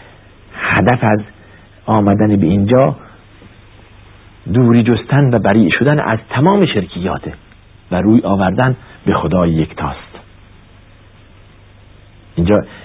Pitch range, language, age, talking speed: 100-120 Hz, Persian, 50-69, 100 wpm